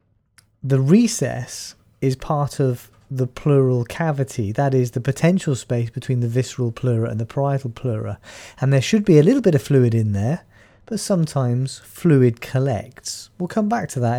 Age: 30-49